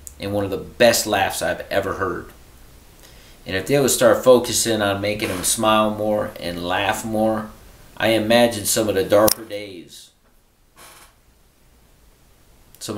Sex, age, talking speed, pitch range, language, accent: male, 40-59, 145 wpm, 90-110 Hz, English, American